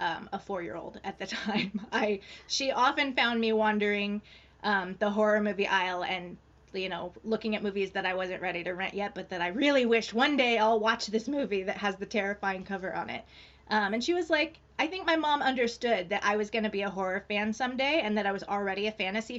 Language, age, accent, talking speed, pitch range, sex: English, 20-39, American, 230 wpm, 195-225 Hz, female